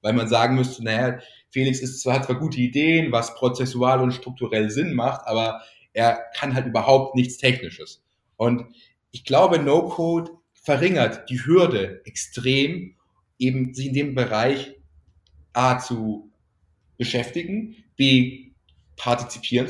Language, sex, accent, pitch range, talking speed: German, male, German, 115-145 Hz, 130 wpm